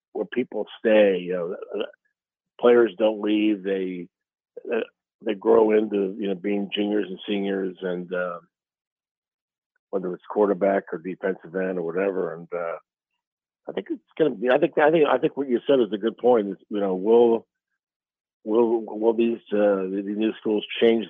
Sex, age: male, 50-69